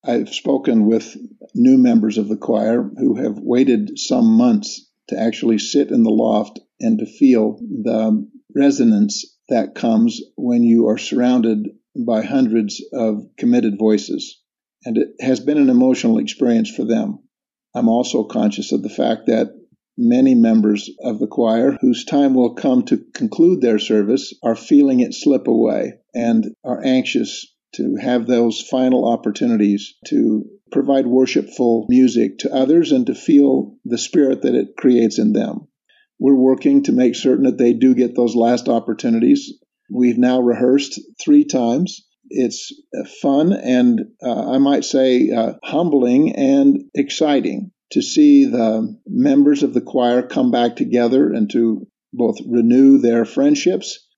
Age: 50-69